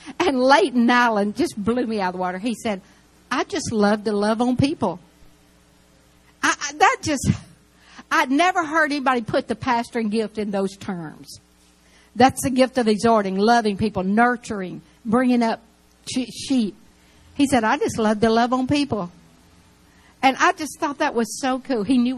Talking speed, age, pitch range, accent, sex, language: 175 wpm, 60-79, 195-260 Hz, American, female, English